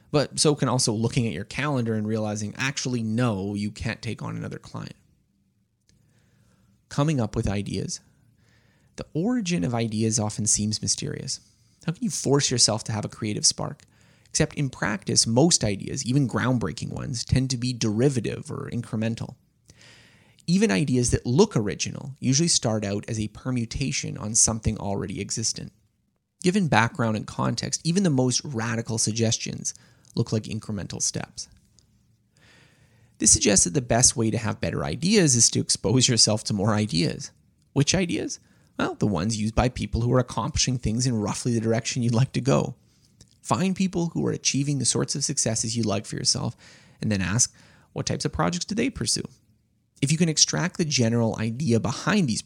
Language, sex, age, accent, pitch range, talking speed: English, male, 20-39, American, 110-140 Hz, 170 wpm